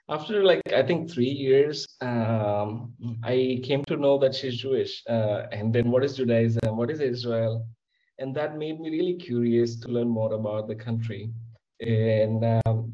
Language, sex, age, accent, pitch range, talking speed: English, male, 20-39, Indian, 110-130 Hz, 170 wpm